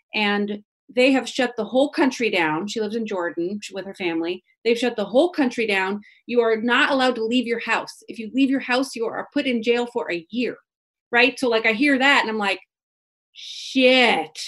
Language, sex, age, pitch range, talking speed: English, female, 30-49, 195-255 Hz, 215 wpm